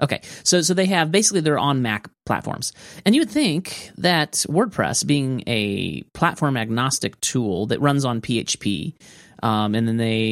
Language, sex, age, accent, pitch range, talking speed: English, male, 30-49, American, 115-180 Hz, 180 wpm